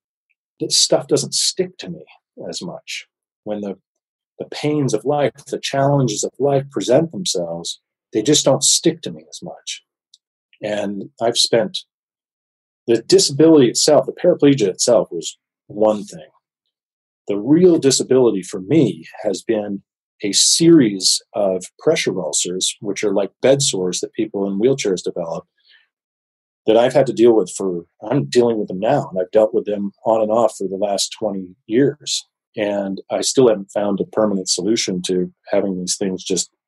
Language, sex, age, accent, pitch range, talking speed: English, male, 40-59, American, 95-130 Hz, 165 wpm